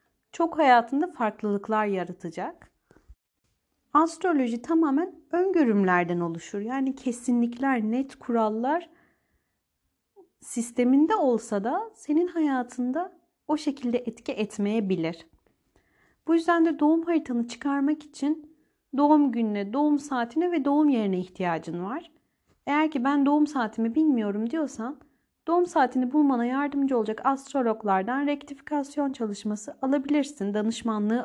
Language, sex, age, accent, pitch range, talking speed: Turkish, female, 40-59, native, 225-300 Hz, 105 wpm